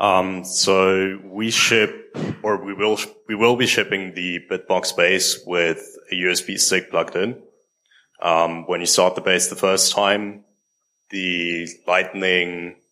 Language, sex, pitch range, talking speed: English, male, 90-110 Hz, 145 wpm